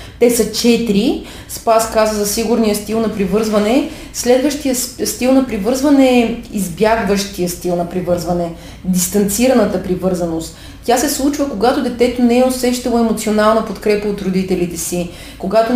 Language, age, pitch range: Bulgarian, 30-49, 200-230 Hz